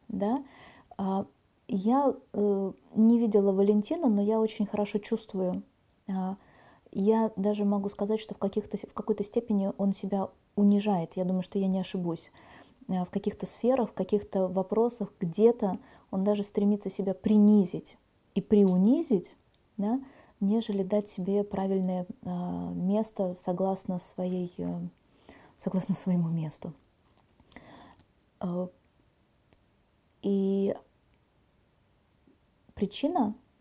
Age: 20-39